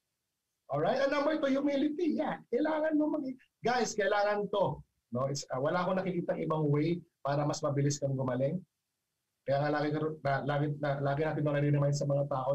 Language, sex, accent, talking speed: Filipino, male, native, 175 wpm